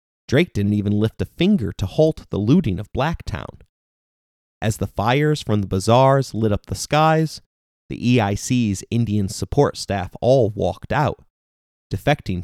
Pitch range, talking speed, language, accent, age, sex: 100-130 Hz, 150 wpm, English, American, 30-49, male